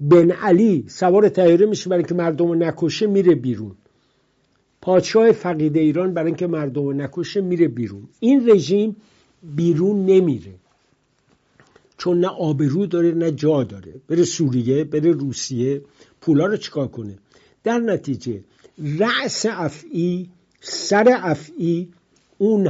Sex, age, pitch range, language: male, 60-79, 135-185 Hz, English